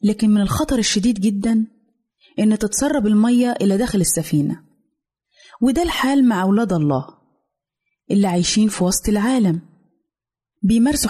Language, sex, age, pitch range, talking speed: Arabic, female, 20-39, 200-250 Hz, 120 wpm